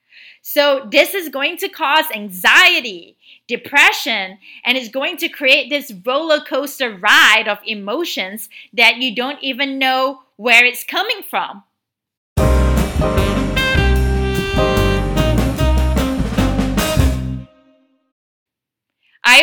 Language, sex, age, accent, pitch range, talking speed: English, female, 30-49, American, 220-285 Hz, 90 wpm